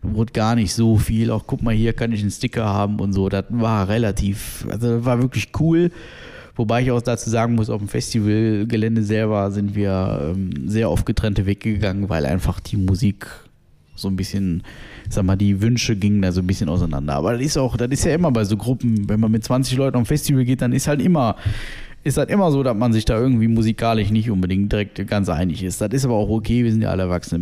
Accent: German